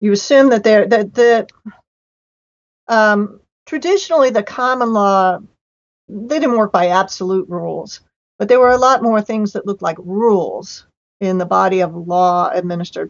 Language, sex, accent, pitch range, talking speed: English, female, American, 175-220 Hz, 155 wpm